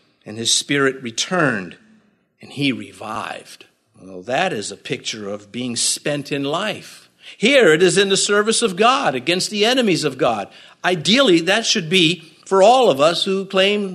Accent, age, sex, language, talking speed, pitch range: American, 50-69, male, English, 170 wpm, 130-195 Hz